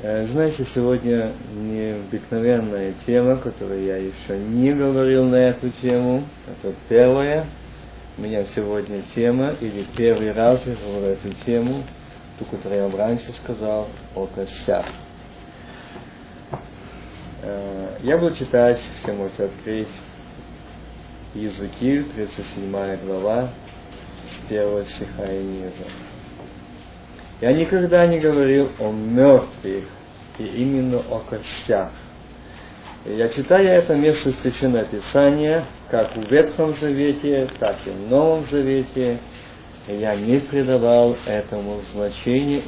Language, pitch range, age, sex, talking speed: Russian, 100-135 Hz, 20-39, male, 105 wpm